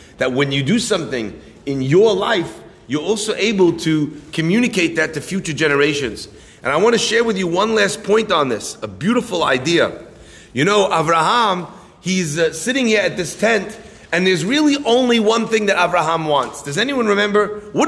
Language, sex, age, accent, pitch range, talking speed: English, male, 30-49, American, 160-225 Hz, 180 wpm